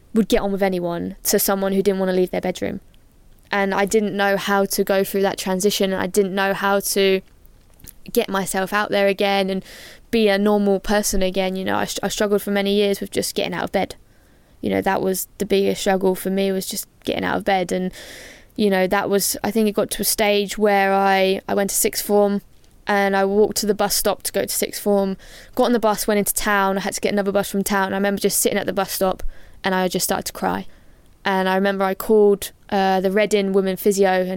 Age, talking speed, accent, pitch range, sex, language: 10-29, 245 wpm, British, 190-200 Hz, female, English